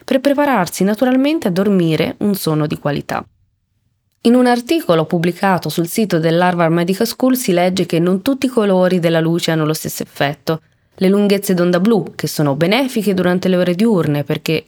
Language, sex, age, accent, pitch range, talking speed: Italian, female, 20-39, native, 160-205 Hz, 175 wpm